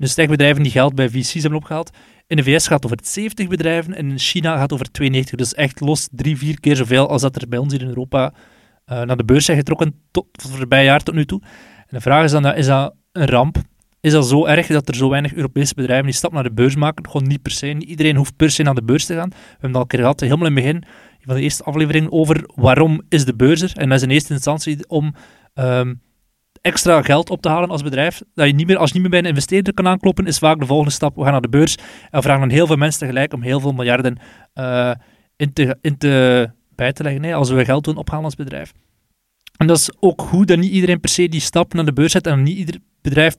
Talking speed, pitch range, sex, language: 275 wpm, 135-160 Hz, male, Dutch